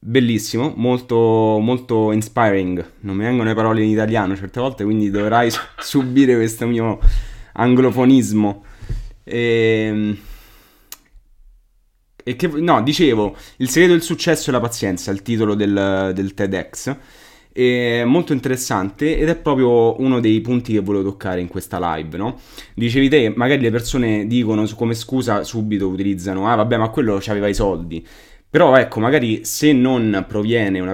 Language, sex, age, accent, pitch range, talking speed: Italian, male, 20-39, native, 100-120 Hz, 145 wpm